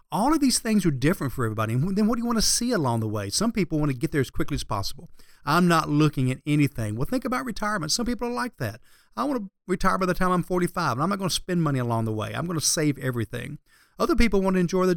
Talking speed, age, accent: 295 wpm, 40-59, American